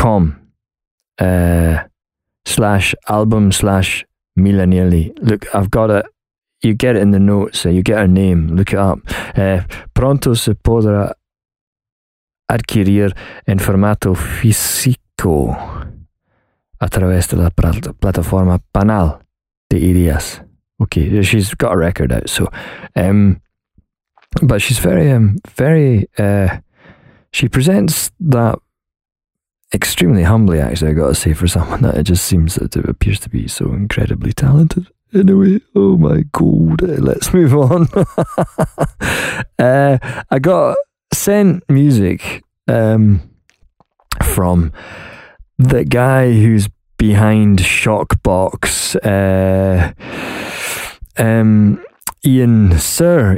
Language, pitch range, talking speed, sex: English, 90-115 Hz, 110 wpm, male